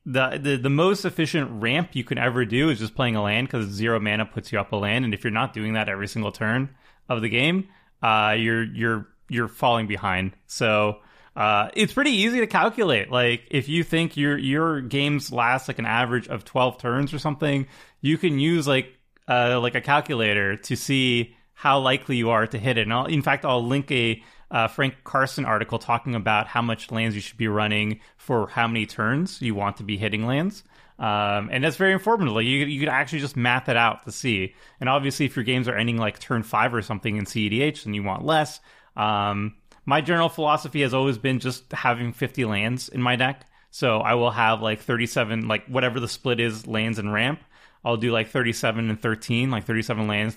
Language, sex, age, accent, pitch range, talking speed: English, male, 30-49, American, 110-135 Hz, 215 wpm